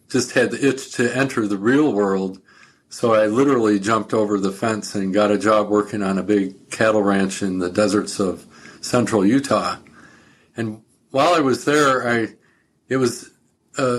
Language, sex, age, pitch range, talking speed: English, male, 50-69, 105-120 Hz, 175 wpm